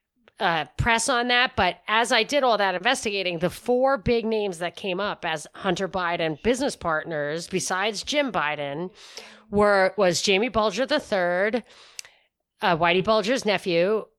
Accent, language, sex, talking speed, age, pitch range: American, English, female, 150 wpm, 40-59, 175-235 Hz